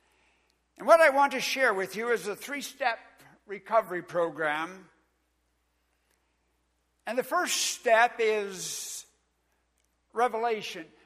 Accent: American